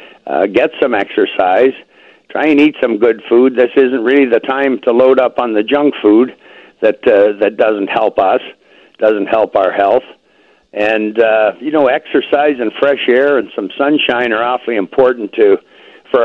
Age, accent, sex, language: 60-79, American, male, English